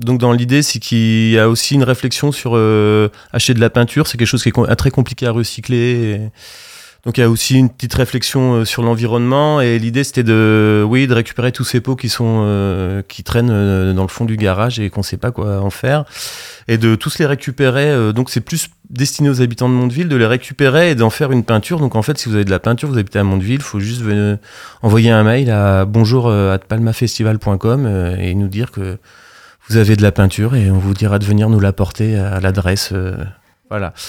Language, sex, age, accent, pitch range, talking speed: French, male, 30-49, French, 105-125 Hz, 230 wpm